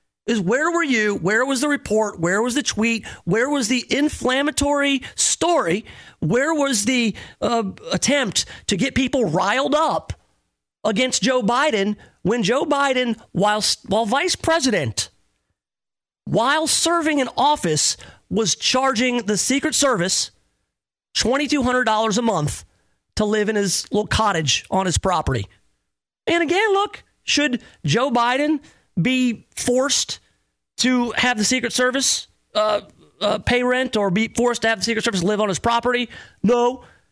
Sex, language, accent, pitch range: male, English, American, 200-260 Hz